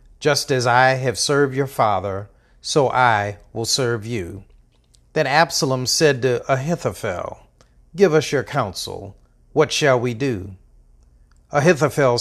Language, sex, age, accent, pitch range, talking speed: English, male, 50-69, American, 110-135 Hz, 130 wpm